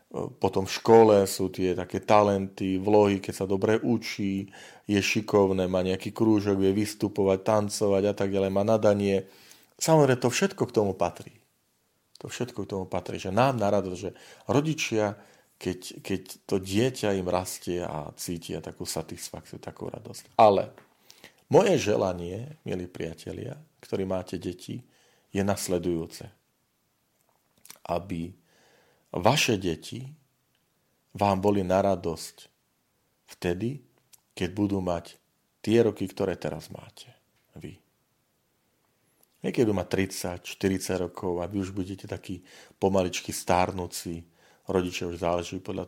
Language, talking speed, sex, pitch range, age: Slovak, 125 wpm, male, 90-110 Hz, 40-59